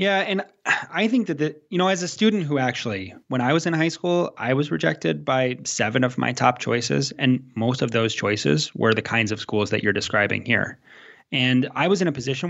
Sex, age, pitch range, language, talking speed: male, 20-39, 120-160 Hz, English, 230 wpm